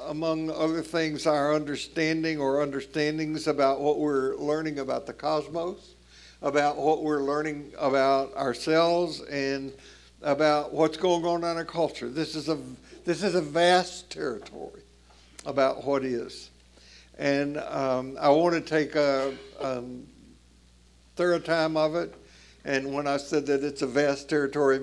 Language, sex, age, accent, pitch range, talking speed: English, male, 60-79, American, 135-155 Hz, 145 wpm